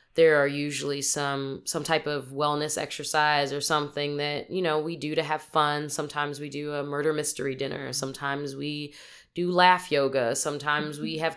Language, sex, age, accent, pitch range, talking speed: English, female, 20-39, American, 140-155 Hz, 180 wpm